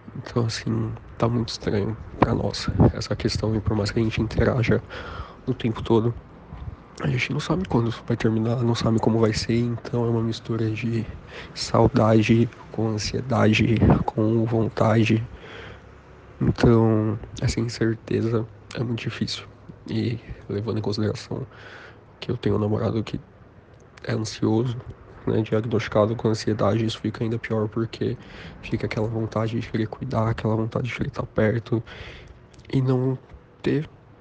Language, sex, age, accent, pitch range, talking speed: Portuguese, male, 20-39, Brazilian, 110-120 Hz, 145 wpm